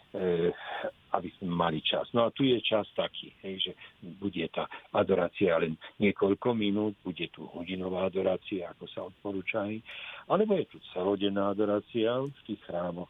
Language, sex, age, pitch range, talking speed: Slovak, male, 50-69, 95-115 Hz, 150 wpm